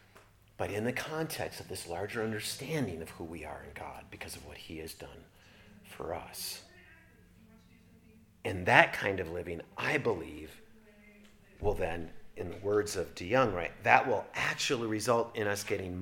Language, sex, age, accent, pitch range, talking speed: English, male, 40-59, American, 105-155 Hz, 165 wpm